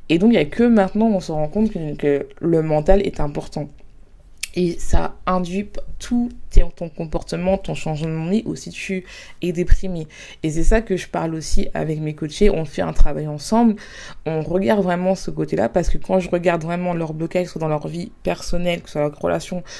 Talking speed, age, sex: 225 wpm, 20-39, female